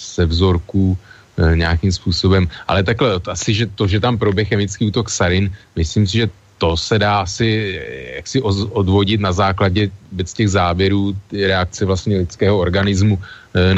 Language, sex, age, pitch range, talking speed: Slovak, male, 30-49, 95-105 Hz, 150 wpm